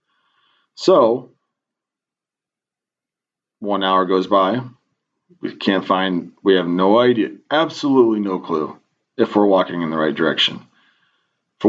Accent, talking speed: American, 120 wpm